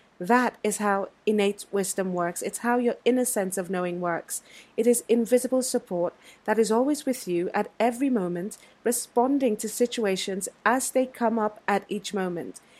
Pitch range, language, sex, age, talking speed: 195-245 Hz, English, female, 30-49, 170 wpm